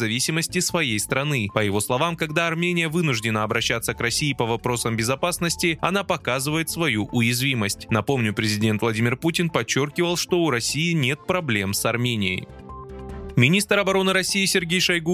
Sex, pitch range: male, 115-175 Hz